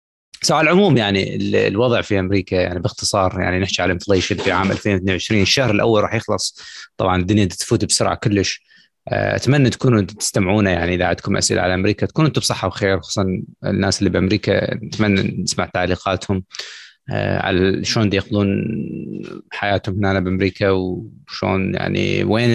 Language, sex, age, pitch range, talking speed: Arabic, male, 20-39, 95-105 Hz, 145 wpm